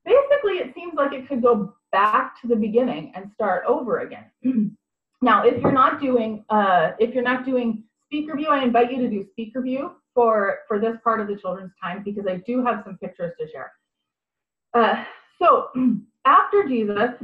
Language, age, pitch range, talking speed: English, 30-49, 190-255 Hz, 190 wpm